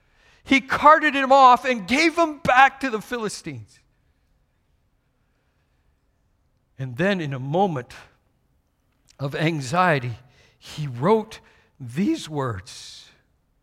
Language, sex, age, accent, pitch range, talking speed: English, male, 50-69, American, 130-195 Hz, 95 wpm